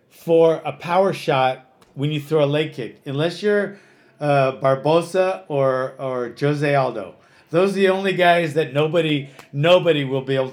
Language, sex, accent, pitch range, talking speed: English, male, American, 140-175 Hz, 165 wpm